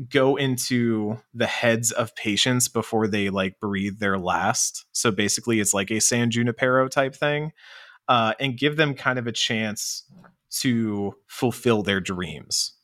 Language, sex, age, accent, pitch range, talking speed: English, male, 30-49, American, 105-140 Hz, 155 wpm